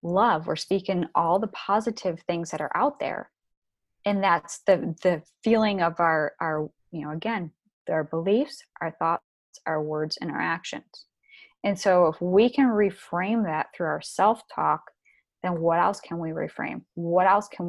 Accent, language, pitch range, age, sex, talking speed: American, English, 160-200 Hz, 20-39, female, 170 wpm